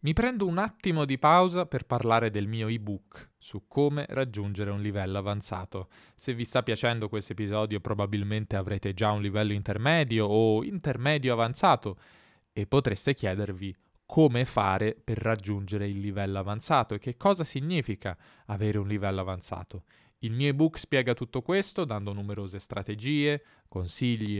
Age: 10-29